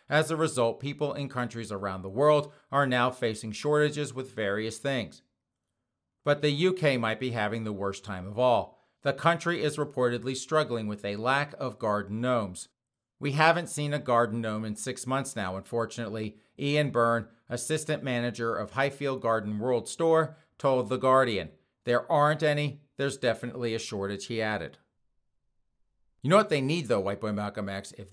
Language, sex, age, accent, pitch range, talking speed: English, male, 40-59, American, 110-145 Hz, 175 wpm